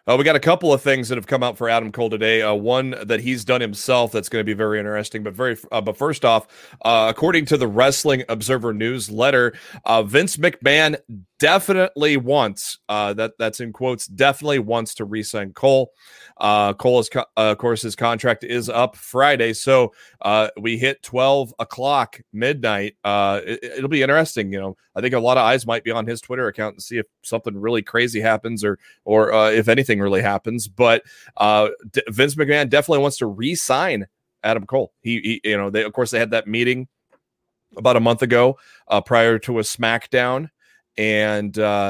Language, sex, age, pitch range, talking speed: English, male, 30-49, 105-125 Hz, 200 wpm